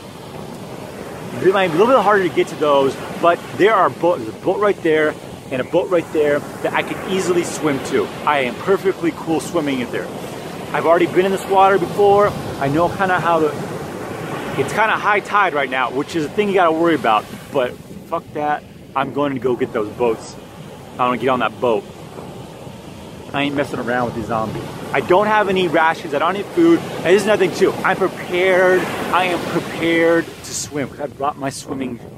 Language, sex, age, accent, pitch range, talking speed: English, male, 30-49, American, 140-190 Hz, 215 wpm